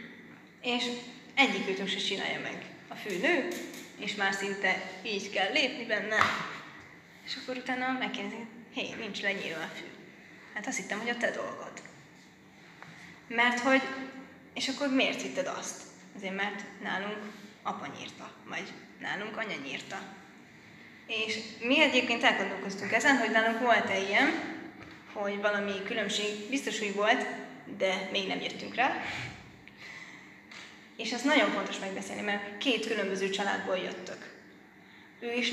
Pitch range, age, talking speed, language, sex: 200-245 Hz, 20-39, 135 wpm, Hungarian, female